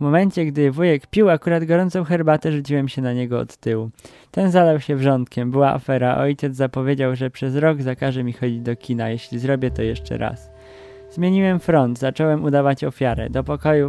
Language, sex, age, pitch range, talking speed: Polish, male, 20-39, 125-150 Hz, 180 wpm